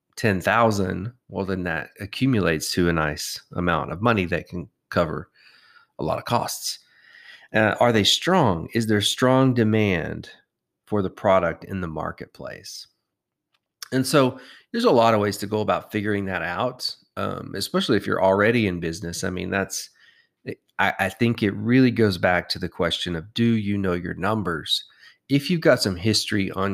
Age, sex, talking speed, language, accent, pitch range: 30-49, male, 175 wpm, English, American, 95-120 Hz